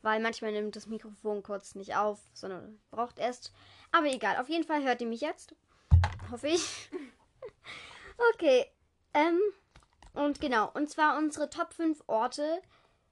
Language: German